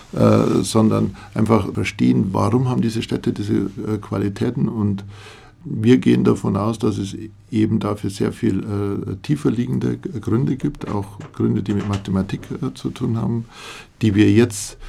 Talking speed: 155 wpm